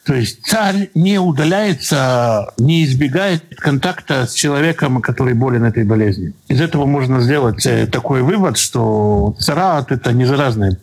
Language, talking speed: Russian, 140 wpm